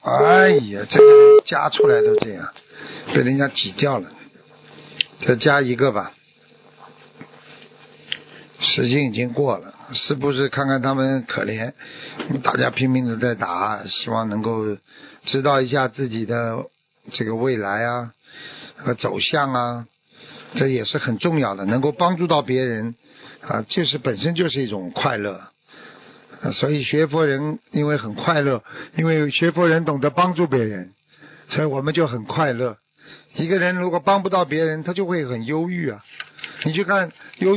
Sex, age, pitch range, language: male, 50-69, 130-175 Hz, Chinese